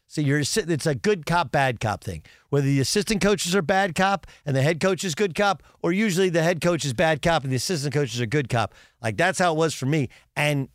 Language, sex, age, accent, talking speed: English, male, 50-69, American, 255 wpm